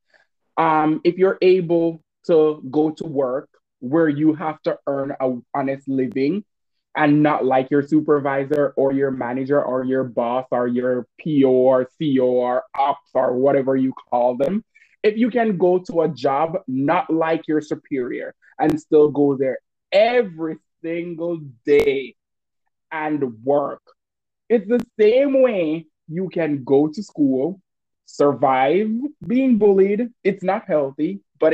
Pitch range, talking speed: 135-170 Hz, 145 wpm